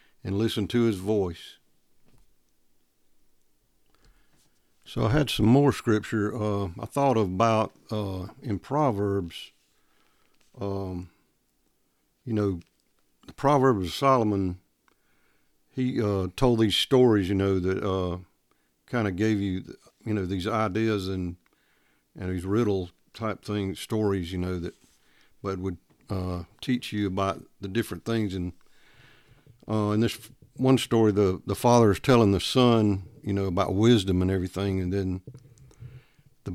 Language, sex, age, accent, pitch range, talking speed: English, male, 50-69, American, 95-125 Hz, 135 wpm